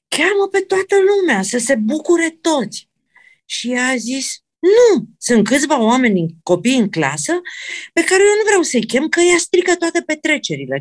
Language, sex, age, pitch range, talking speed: Romanian, female, 50-69, 215-350 Hz, 170 wpm